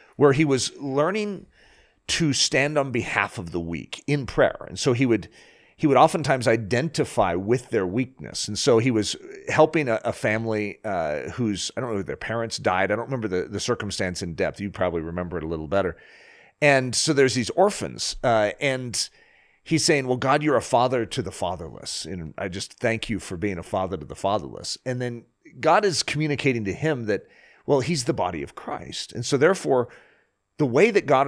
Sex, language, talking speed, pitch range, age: male, English, 200 wpm, 105-150 Hz, 40-59